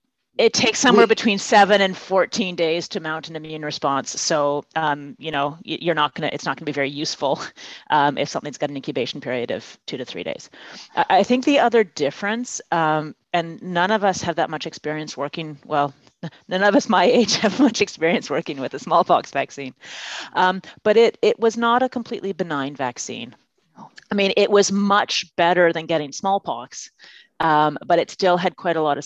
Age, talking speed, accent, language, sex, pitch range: 30-49, 200 wpm, American, English, female, 140-185 Hz